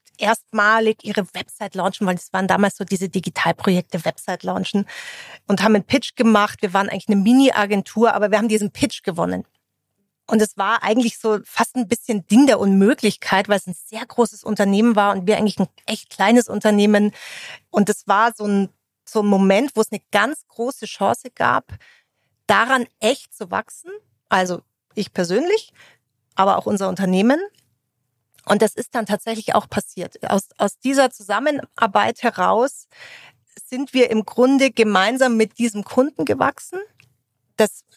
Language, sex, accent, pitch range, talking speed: German, female, German, 200-230 Hz, 160 wpm